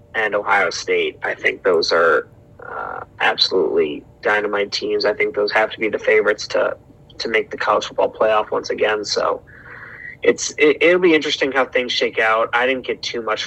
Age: 30-49